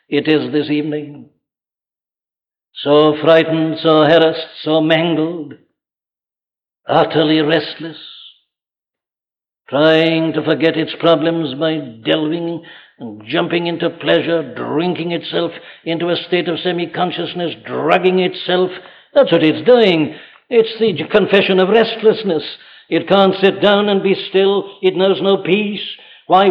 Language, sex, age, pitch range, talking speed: English, male, 60-79, 160-215 Hz, 120 wpm